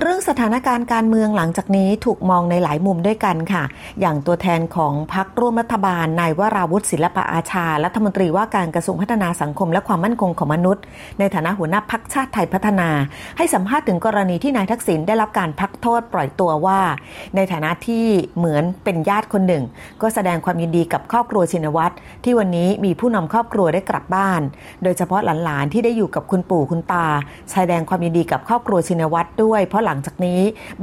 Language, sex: Thai, female